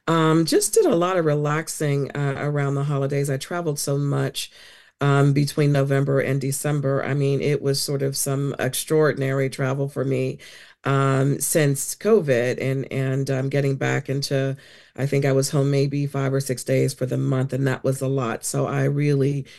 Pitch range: 135-160 Hz